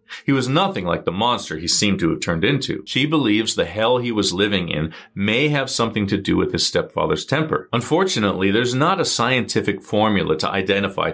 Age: 40-59